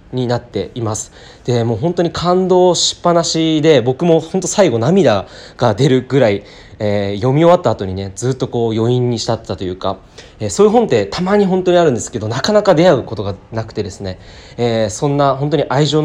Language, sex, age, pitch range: Japanese, male, 20-39, 110-170 Hz